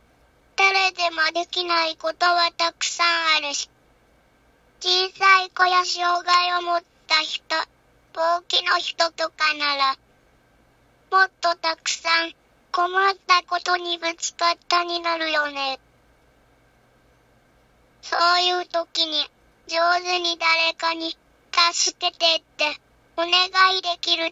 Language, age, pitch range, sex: Japanese, 20-39, 320-355 Hz, male